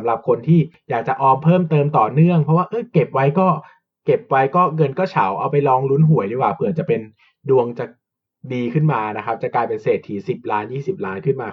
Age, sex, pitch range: 20-39, male, 120-160 Hz